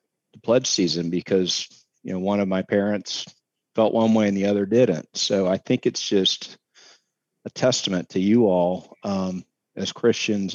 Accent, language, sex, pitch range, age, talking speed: American, English, male, 95-105 Hz, 50-69, 165 wpm